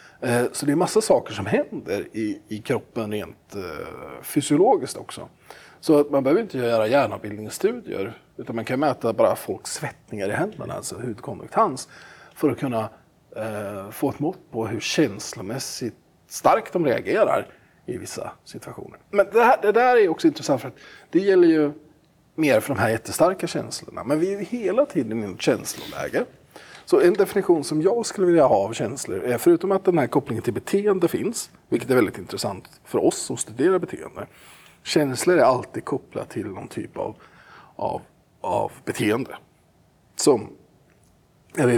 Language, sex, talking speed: Swedish, male, 170 wpm